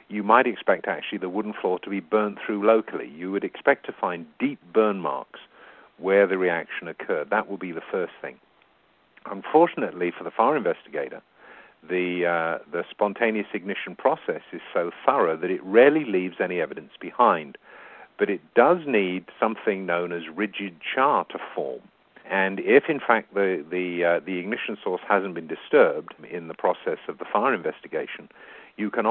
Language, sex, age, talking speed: English, male, 50-69, 175 wpm